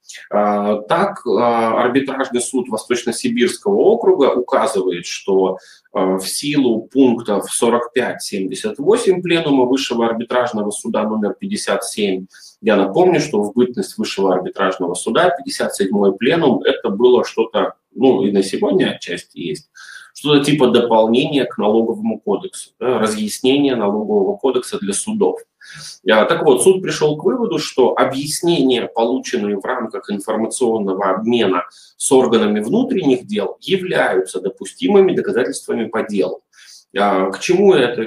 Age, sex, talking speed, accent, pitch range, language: 20-39, male, 115 wpm, native, 105-140 Hz, Russian